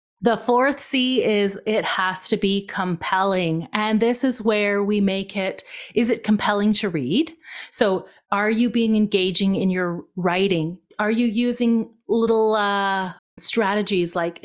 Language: English